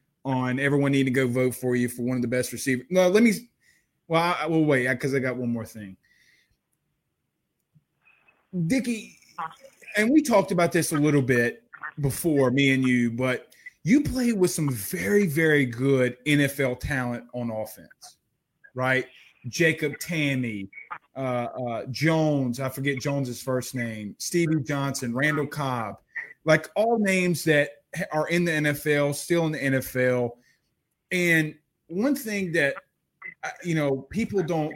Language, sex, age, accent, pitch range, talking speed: English, male, 30-49, American, 130-170 Hz, 150 wpm